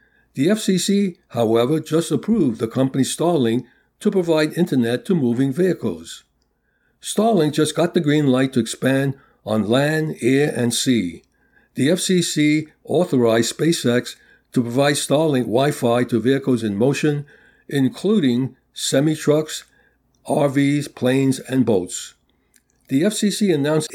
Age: 60-79